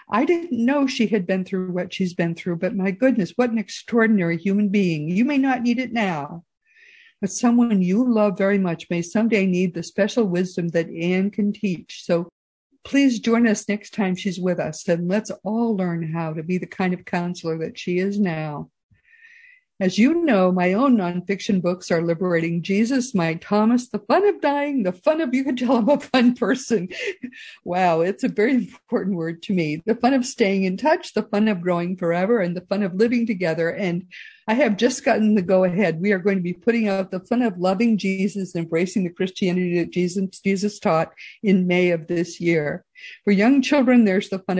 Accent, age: American, 50-69